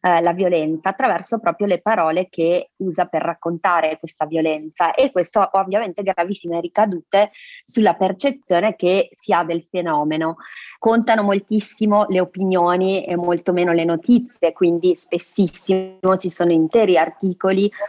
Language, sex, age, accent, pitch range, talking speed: Italian, female, 30-49, native, 170-195 Hz, 140 wpm